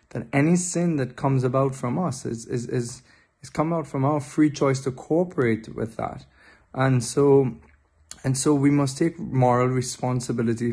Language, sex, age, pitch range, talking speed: English, male, 20-39, 110-130 Hz, 175 wpm